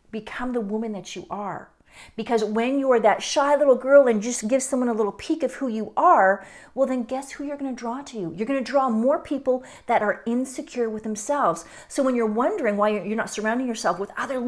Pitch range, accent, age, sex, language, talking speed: 210-275 Hz, American, 40-59, female, English, 235 wpm